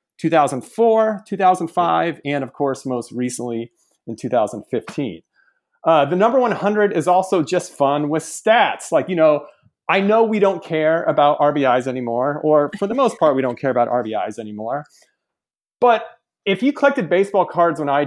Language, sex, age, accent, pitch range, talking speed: English, male, 30-49, American, 145-210 Hz, 165 wpm